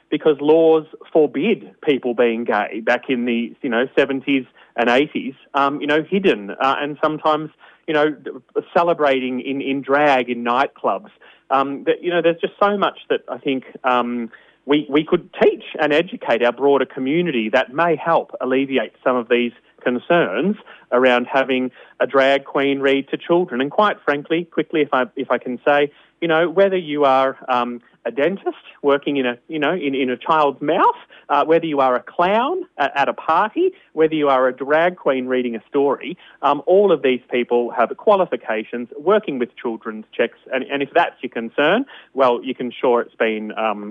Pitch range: 125-165 Hz